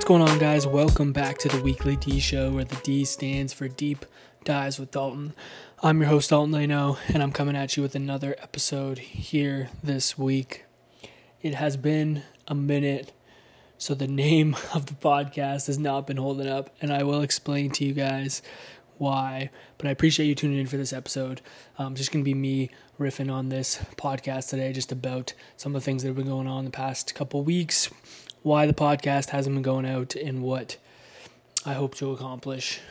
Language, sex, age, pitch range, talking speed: English, male, 20-39, 135-145 Hz, 195 wpm